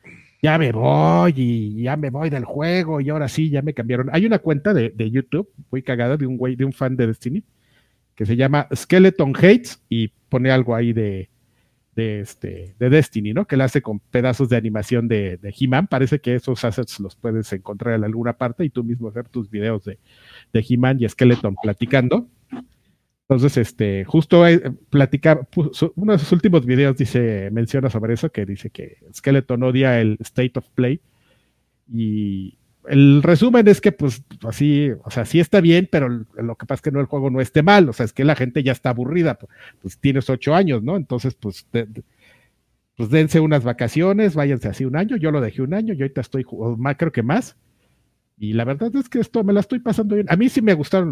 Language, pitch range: Spanish, 115-155 Hz